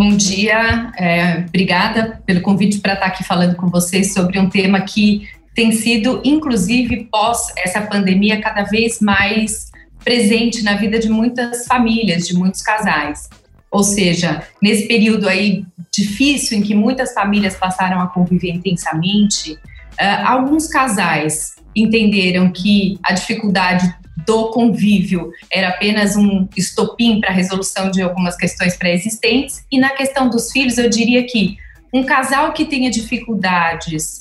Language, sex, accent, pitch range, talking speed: English, female, Brazilian, 190-230 Hz, 140 wpm